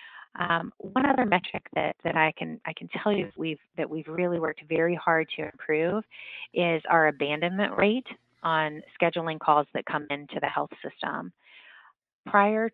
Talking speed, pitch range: 165 wpm, 155-180 Hz